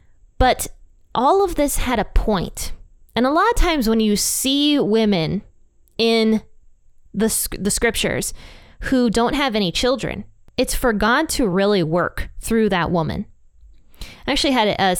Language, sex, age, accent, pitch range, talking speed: English, female, 20-39, American, 175-230 Hz, 150 wpm